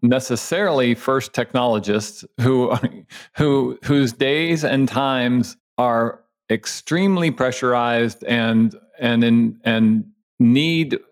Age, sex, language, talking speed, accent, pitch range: 40-59, male, English, 90 wpm, American, 110-130 Hz